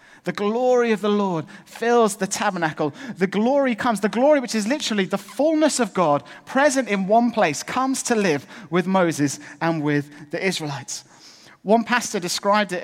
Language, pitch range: English, 175-240 Hz